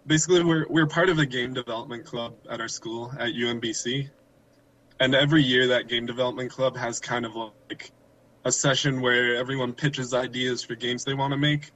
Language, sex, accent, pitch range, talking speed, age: English, male, American, 120-140 Hz, 190 wpm, 20-39